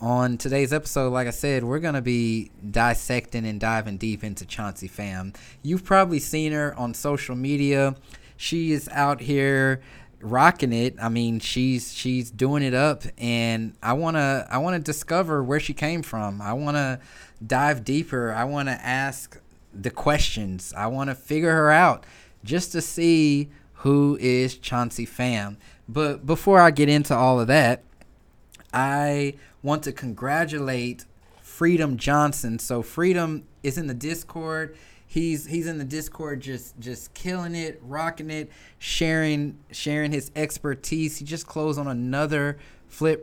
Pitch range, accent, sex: 120-150 Hz, American, male